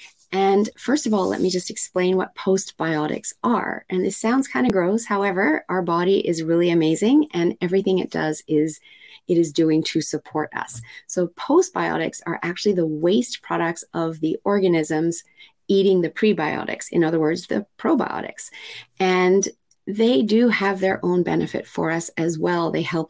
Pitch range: 160-200 Hz